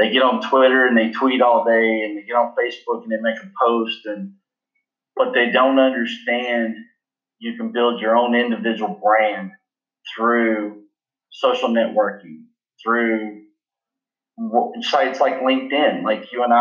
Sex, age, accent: male, 30-49, American